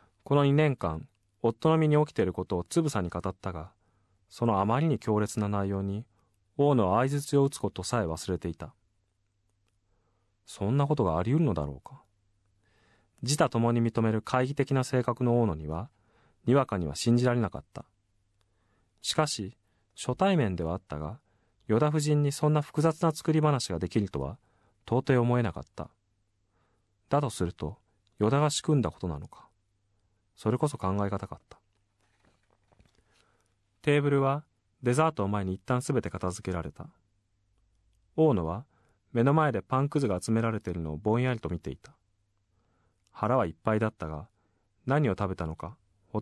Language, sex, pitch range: Japanese, male, 95-120 Hz